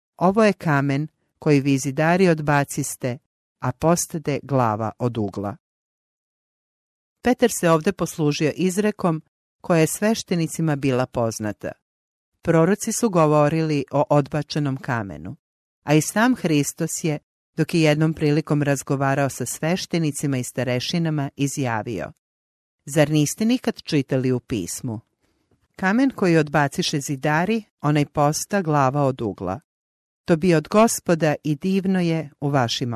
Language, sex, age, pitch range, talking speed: English, female, 50-69, 140-175 Hz, 120 wpm